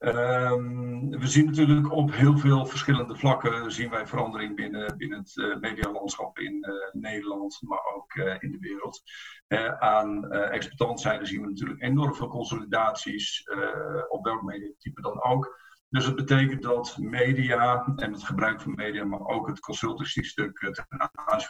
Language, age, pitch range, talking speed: Dutch, 50-69, 115-140 Hz, 165 wpm